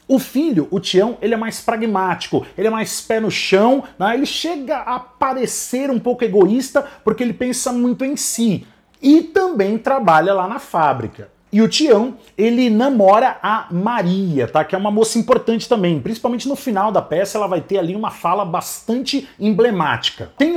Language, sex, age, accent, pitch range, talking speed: Portuguese, male, 30-49, Brazilian, 170-245 Hz, 180 wpm